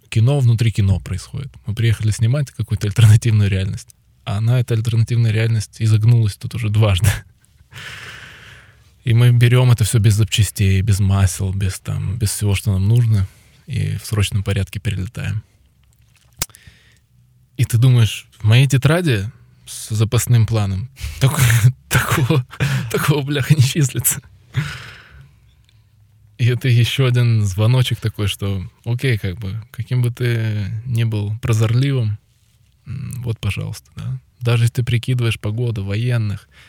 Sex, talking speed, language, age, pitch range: male, 130 wpm, Russian, 20-39, 105-125 Hz